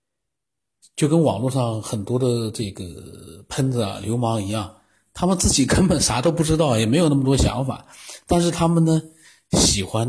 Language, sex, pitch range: Chinese, male, 100-120 Hz